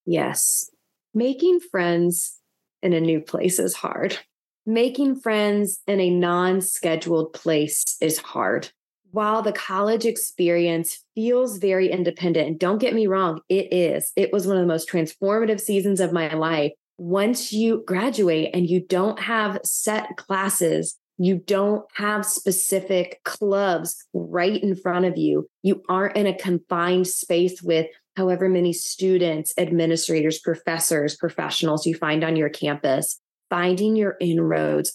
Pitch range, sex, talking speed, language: 170-205 Hz, female, 140 wpm, English